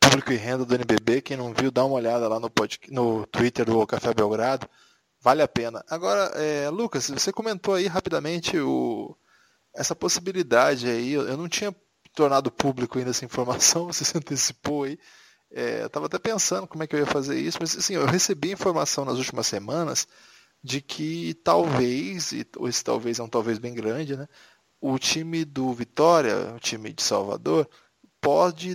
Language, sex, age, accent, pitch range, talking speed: Portuguese, male, 20-39, Brazilian, 125-165 Hz, 180 wpm